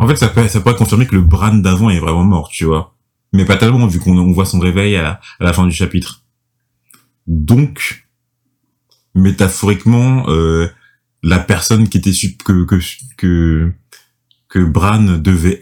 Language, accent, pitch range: French, French, 90-120 Hz